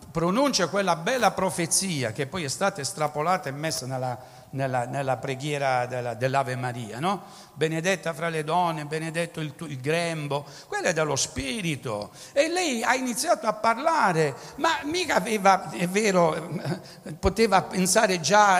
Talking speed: 145 wpm